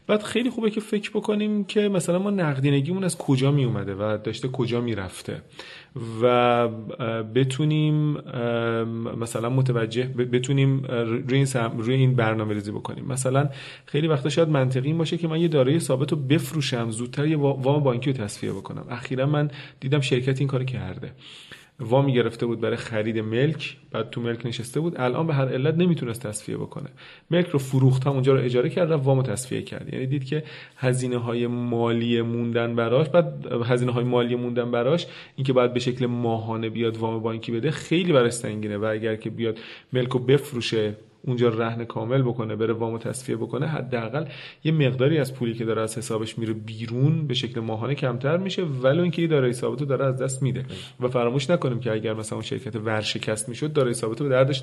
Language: Persian